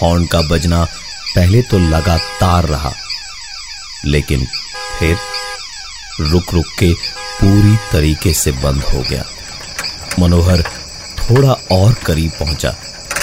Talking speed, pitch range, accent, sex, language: 105 wpm, 80-100 Hz, native, male, Hindi